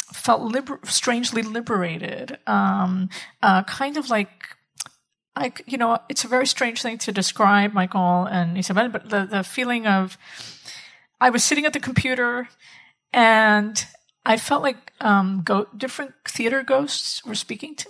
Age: 40-59